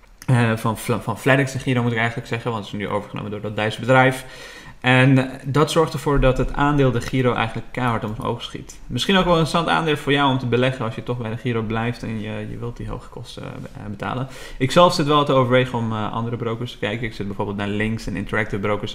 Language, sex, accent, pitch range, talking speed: Dutch, male, Dutch, 110-130 Hz, 250 wpm